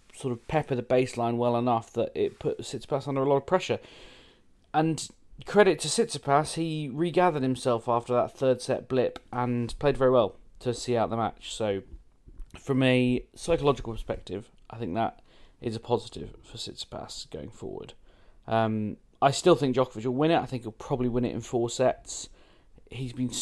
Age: 30-49